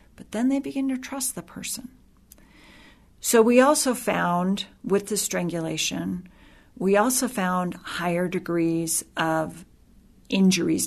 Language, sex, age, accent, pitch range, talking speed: English, female, 40-59, American, 170-215 Hz, 120 wpm